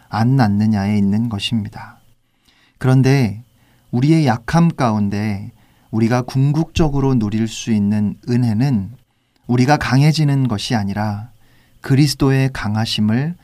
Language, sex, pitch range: Korean, male, 110-135 Hz